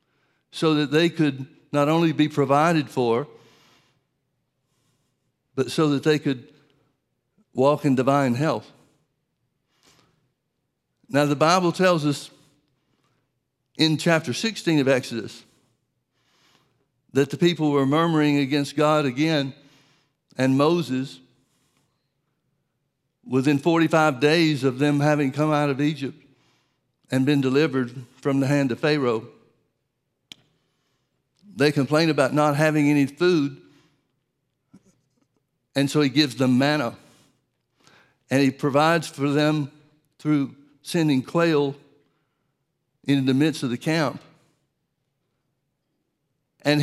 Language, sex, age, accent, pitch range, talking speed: English, male, 60-79, American, 135-155 Hz, 110 wpm